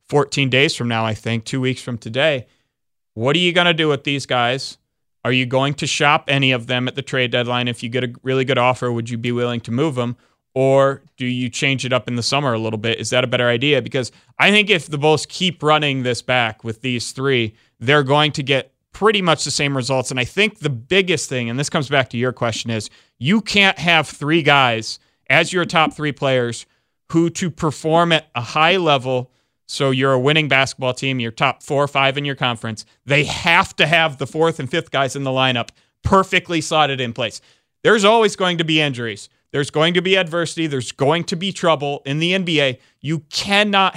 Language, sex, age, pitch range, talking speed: English, male, 30-49, 125-155 Hz, 225 wpm